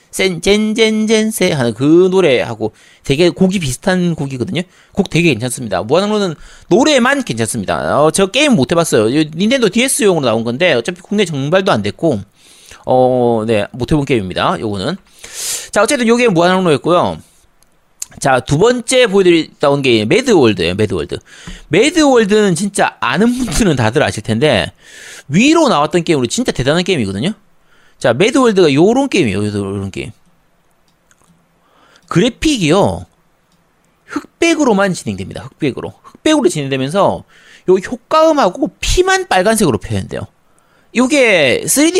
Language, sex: Korean, male